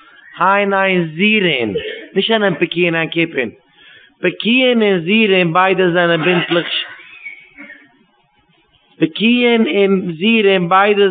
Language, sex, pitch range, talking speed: English, male, 165-200 Hz, 105 wpm